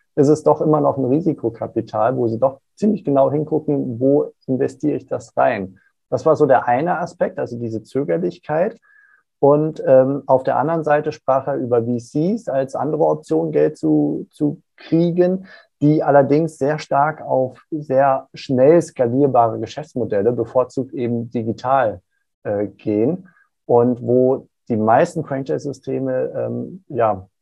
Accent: German